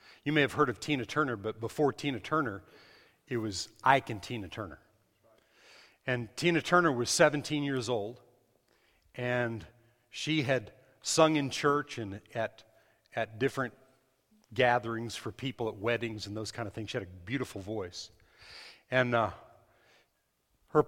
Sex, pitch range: male, 110-135 Hz